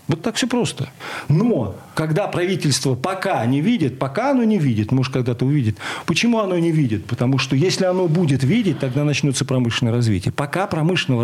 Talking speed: 175 wpm